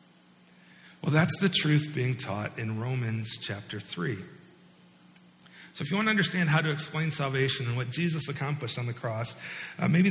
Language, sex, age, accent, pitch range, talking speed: English, male, 50-69, American, 120-165 Hz, 170 wpm